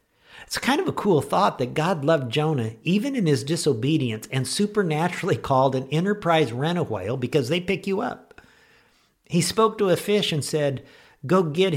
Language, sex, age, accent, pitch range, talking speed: English, male, 50-69, American, 115-150 Hz, 175 wpm